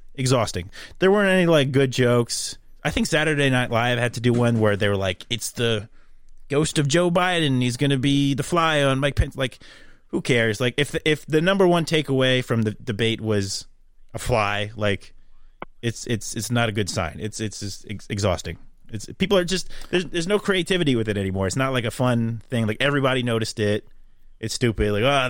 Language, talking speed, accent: English, 210 wpm, American